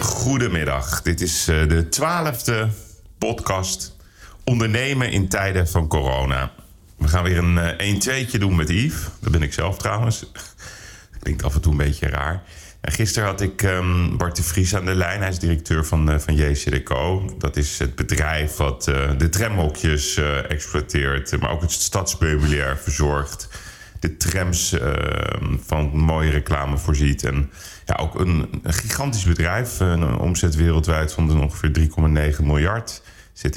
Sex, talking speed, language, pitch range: male, 155 wpm, Dutch, 75-95 Hz